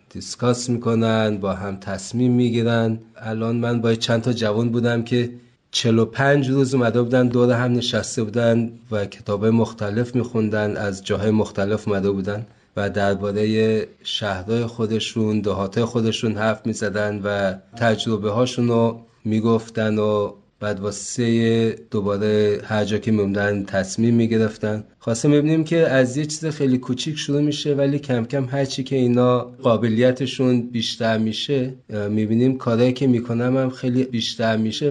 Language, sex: Persian, male